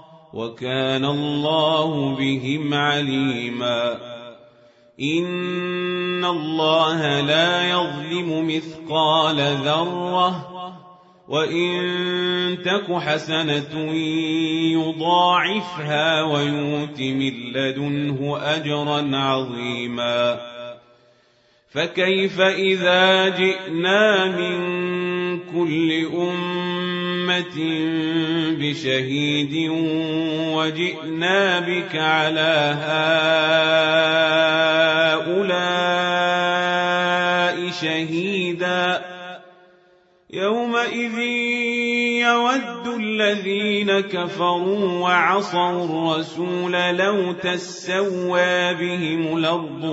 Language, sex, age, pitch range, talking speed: Arabic, male, 30-49, 145-180 Hz, 50 wpm